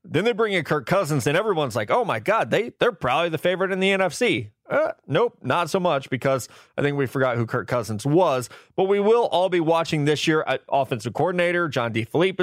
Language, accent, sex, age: English, American, male, 30-49